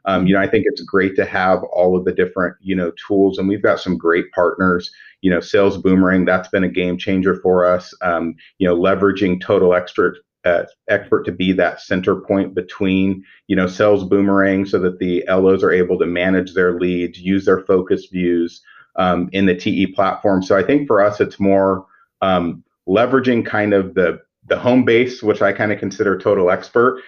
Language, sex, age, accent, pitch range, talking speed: English, male, 40-59, American, 90-105 Hz, 205 wpm